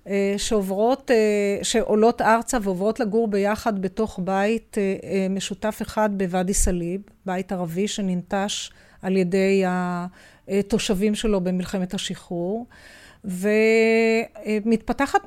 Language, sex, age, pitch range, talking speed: Hebrew, female, 40-59, 190-235 Hz, 85 wpm